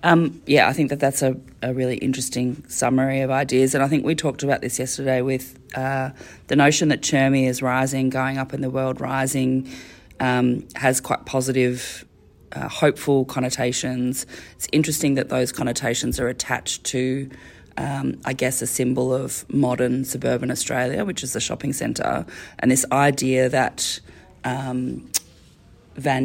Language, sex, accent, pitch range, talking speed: English, female, Australian, 125-135 Hz, 160 wpm